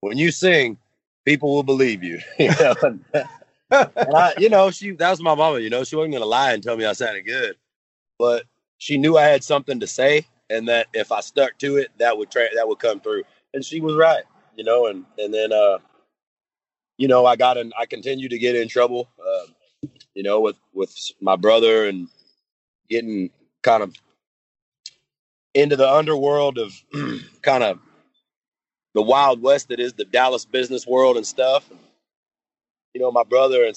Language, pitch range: English, 110-150 Hz